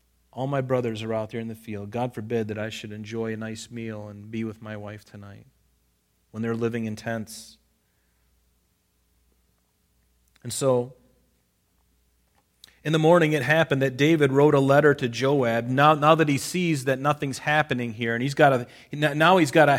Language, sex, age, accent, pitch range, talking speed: English, male, 40-59, American, 115-150 Hz, 180 wpm